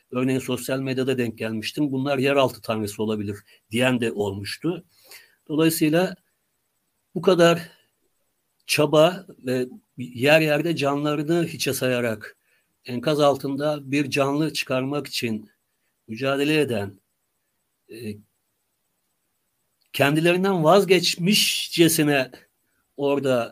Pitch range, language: 130-155 Hz, Turkish